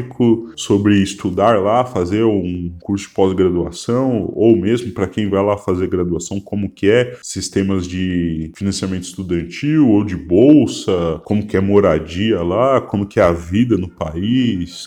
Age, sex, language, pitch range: 10-29, male, Portuguese, 90-115 Hz